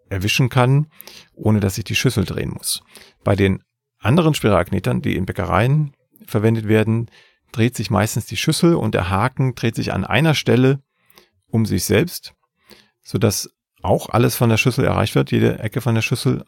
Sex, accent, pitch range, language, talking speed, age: male, German, 95-125 Hz, German, 170 wpm, 40-59